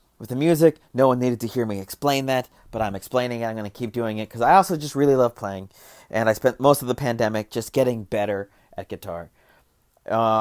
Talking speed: 235 wpm